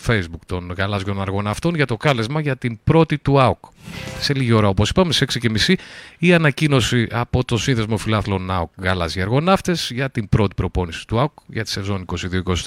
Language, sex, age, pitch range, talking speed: Greek, male, 30-49, 110-160 Hz, 170 wpm